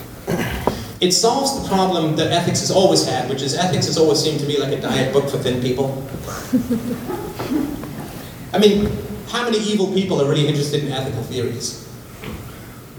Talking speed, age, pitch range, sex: 165 wpm, 30-49, 130-180 Hz, male